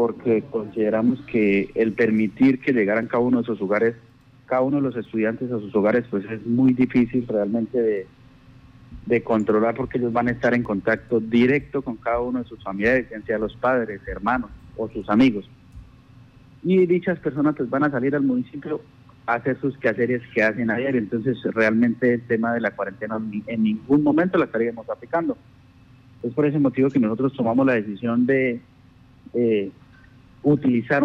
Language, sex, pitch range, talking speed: Spanish, male, 110-130 Hz, 175 wpm